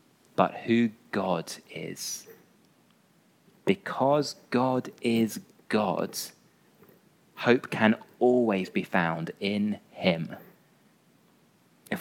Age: 30-49